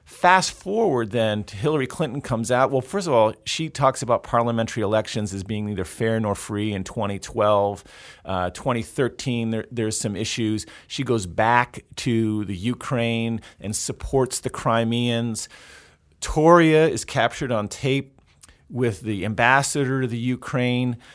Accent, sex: American, male